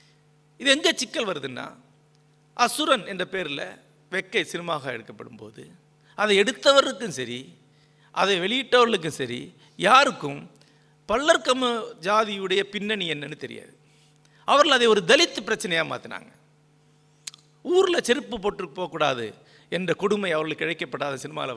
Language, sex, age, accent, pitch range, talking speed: Tamil, male, 50-69, native, 150-235 Hz, 105 wpm